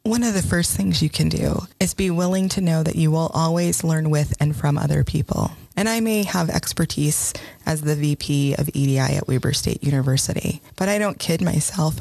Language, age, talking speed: English, 20-39, 210 wpm